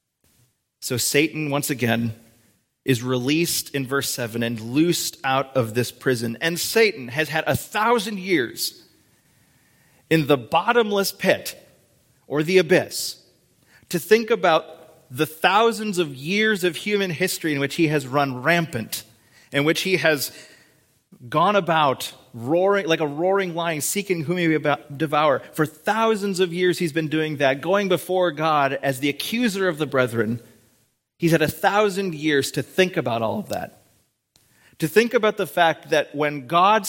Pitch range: 130-175 Hz